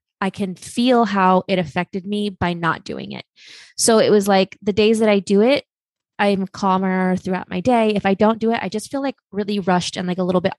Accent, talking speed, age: American, 240 wpm, 20-39